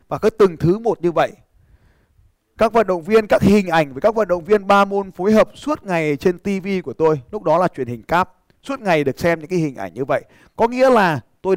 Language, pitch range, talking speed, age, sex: Vietnamese, 155-210 Hz, 255 wpm, 20-39, male